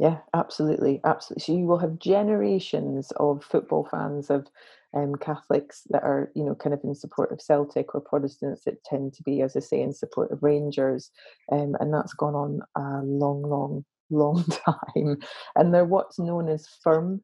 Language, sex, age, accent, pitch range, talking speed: English, female, 30-49, British, 145-165 Hz, 185 wpm